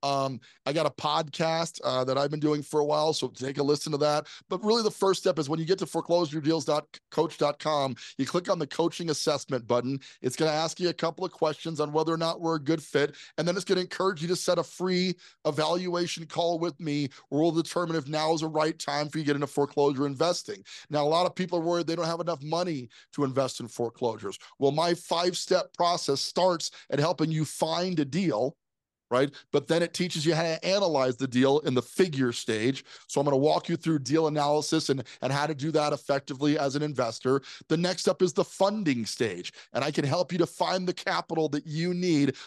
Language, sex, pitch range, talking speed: English, male, 145-170 Hz, 235 wpm